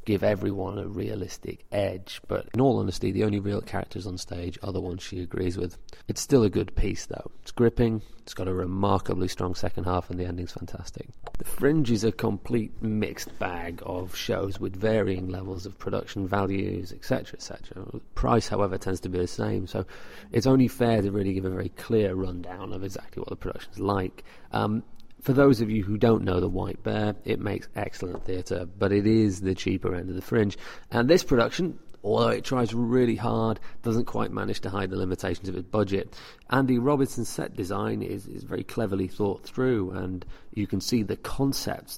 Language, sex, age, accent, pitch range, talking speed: English, male, 30-49, British, 95-115 Hz, 195 wpm